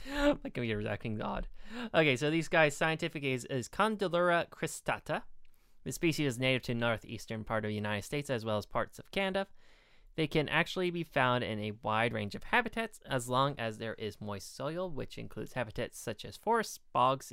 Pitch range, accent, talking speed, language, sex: 110-160 Hz, American, 195 wpm, English, male